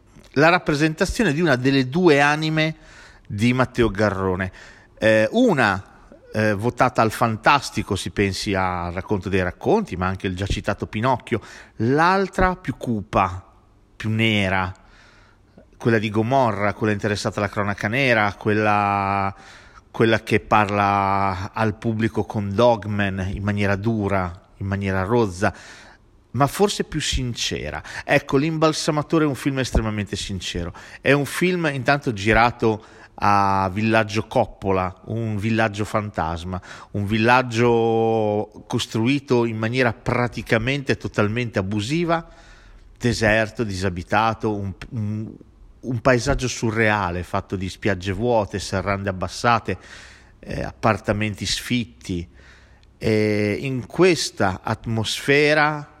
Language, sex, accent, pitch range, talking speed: Italian, male, native, 100-125 Hz, 115 wpm